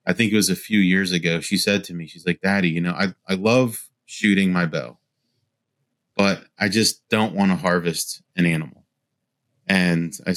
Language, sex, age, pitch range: English, male, 30-49, 90-105 Hz